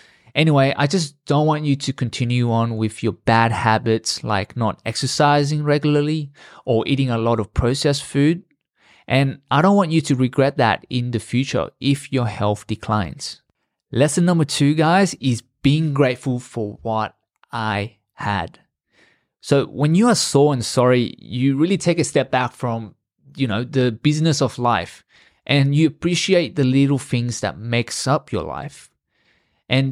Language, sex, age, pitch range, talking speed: English, male, 20-39, 120-150 Hz, 165 wpm